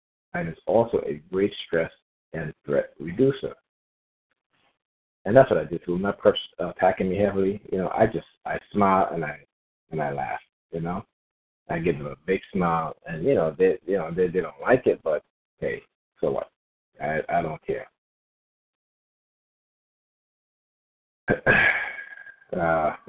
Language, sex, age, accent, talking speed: English, male, 50-69, American, 160 wpm